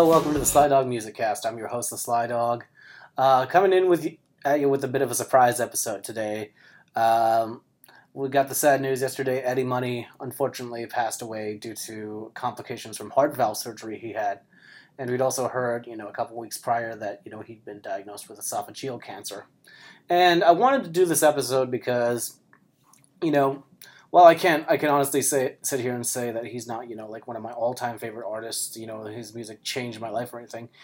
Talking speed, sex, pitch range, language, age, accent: 210 wpm, male, 115-140 Hz, English, 30-49, American